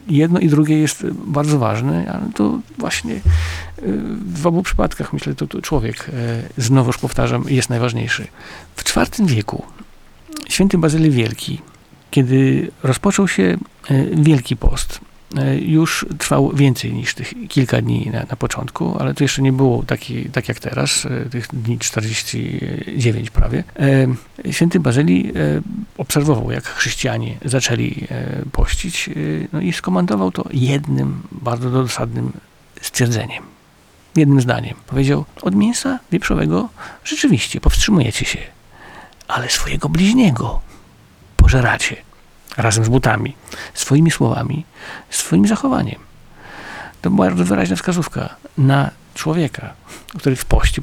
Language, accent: Polish, native